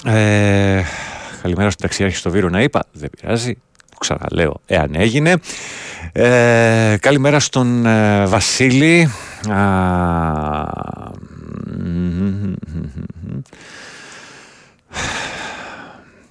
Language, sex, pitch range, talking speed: Greek, male, 85-105 Hz, 85 wpm